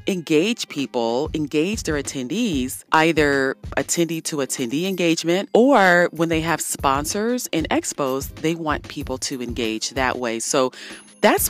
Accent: American